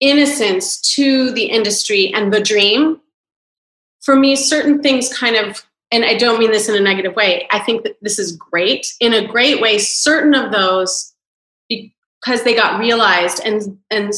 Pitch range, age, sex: 205-260 Hz, 30-49, female